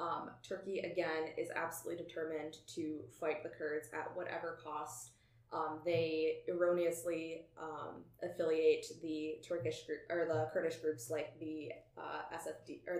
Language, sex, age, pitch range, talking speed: English, female, 20-39, 155-170 Hz, 140 wpm